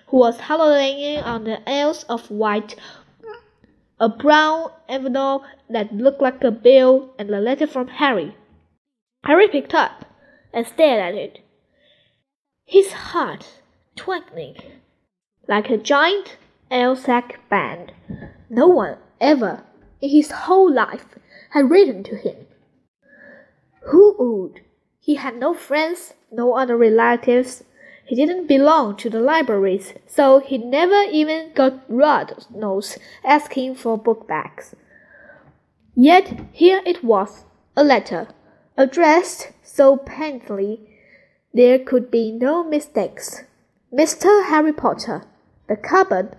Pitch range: 235-310 Hz